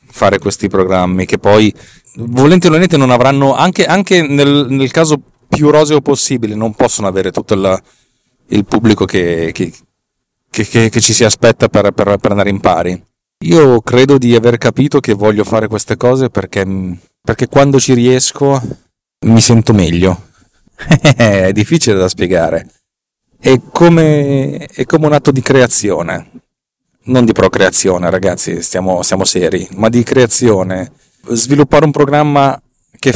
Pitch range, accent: 100-135 Hz, native